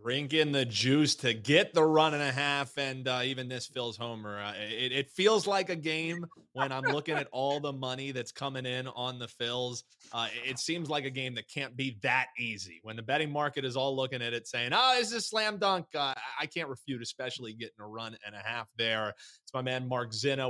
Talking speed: 235 wpm